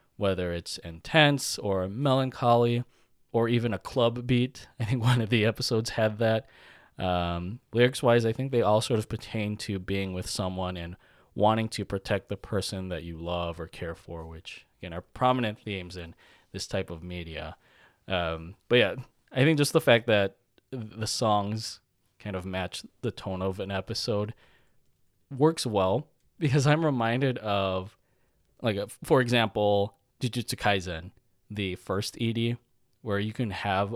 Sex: male